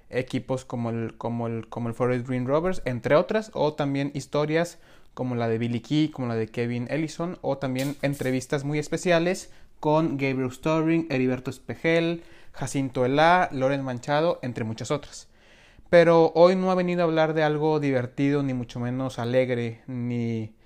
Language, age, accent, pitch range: Spanish, 30-49, Mexican, 125-155 Hz